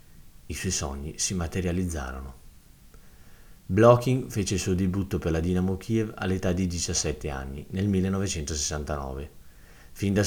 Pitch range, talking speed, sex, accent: 80-100 Hz, 130 wpm, male, native